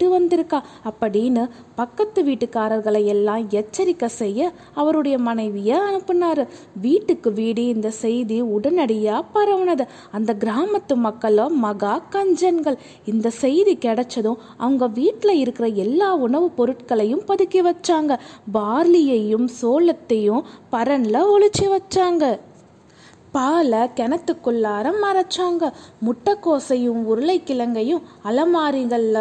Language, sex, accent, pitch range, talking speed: Tamil, female, native, 225-340 Hz, 80 wpm